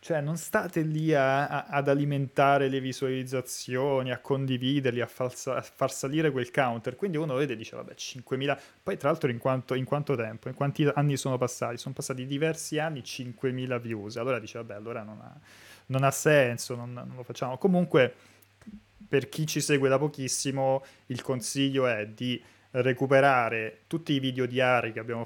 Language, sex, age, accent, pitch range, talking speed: Italian, male, 20-39, native, 115-145 Hz, 170 wpm